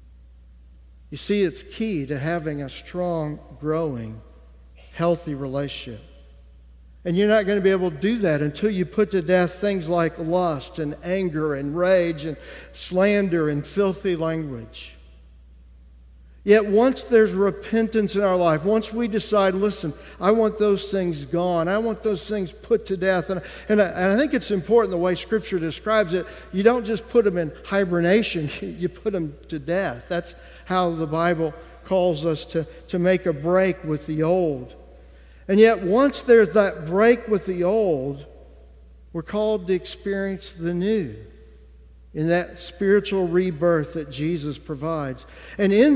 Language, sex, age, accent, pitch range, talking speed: English, male, 50-69, American, 150-200 Hz, 160 wpm